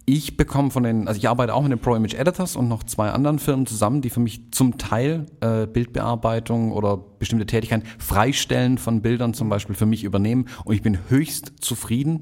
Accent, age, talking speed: German, 40-59, 205 wpm